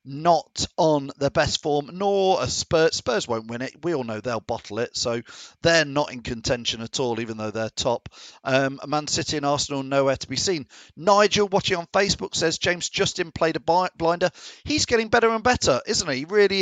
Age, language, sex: 40-59, English, male